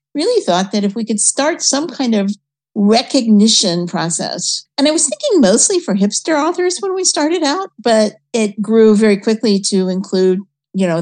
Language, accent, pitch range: English, American, 180-230 Hz